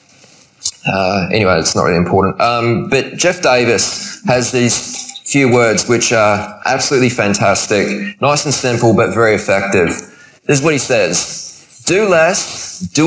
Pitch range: 125-170 Hz